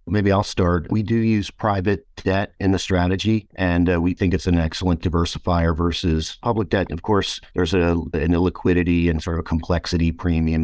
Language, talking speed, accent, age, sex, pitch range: English, 185 wpm, American, 50-69, male, 80-90 Hz